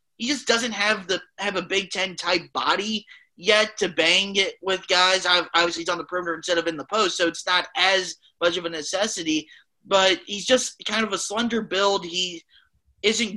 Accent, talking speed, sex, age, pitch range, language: American, 200 wpm, male, 20-39, 185-235 Hz, English